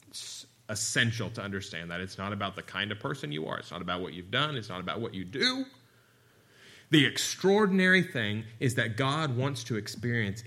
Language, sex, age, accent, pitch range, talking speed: English, male, 30-49, American, 95-120 Hz, 195 wpm